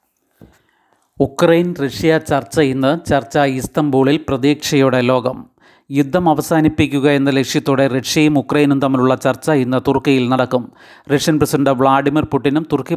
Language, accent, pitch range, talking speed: Malayalam, native, 130-150 Hz, 110 wpm